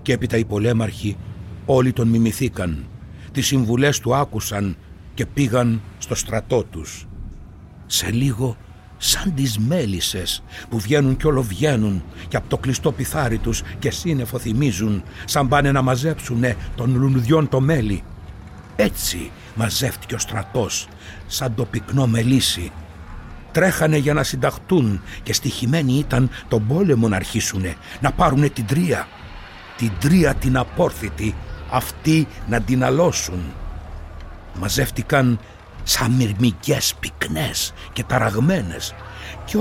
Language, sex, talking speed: Greek, male, 125 wpm